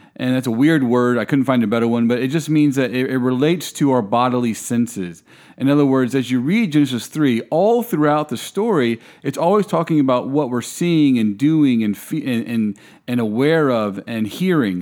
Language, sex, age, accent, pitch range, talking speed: English, male, 40-59, American, 120-150 Hz, 215 wpm